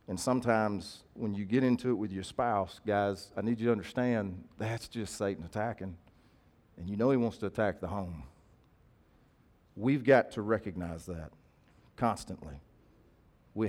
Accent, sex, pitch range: American, male, 95-120 Hz